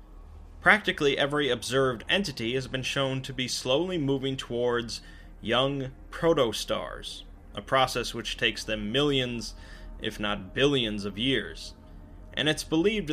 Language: English